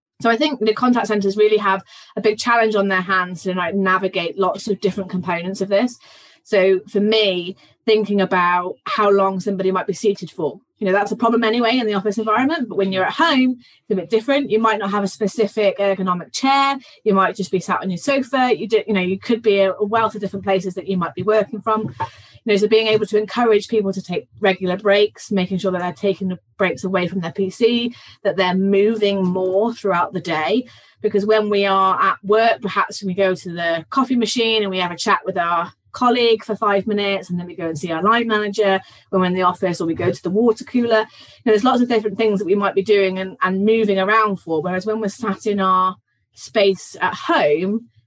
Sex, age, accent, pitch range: female, 20-39, British, 185-215 Hz